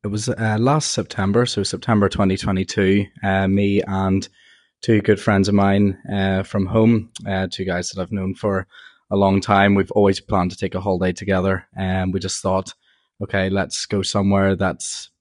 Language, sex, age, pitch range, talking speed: English, male, 20-39, 95-105 Hz, 180 wpm